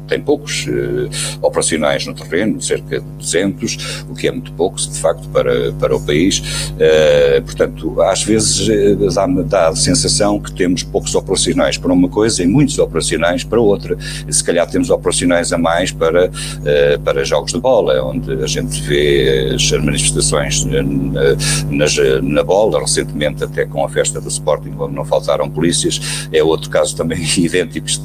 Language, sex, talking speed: Portuguese, male, 165 wpm